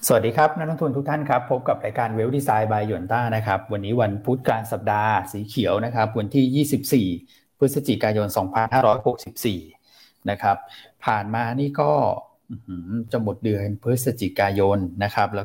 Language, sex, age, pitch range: Thai, male, 20-39, 105-130 Hz